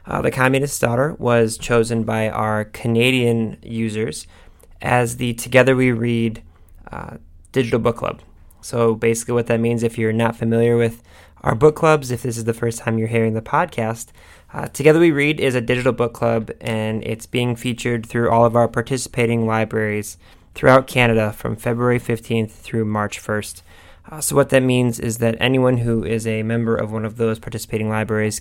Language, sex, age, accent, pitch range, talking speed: English, male, 20-39, American, 110-125 Hz, 185 wpm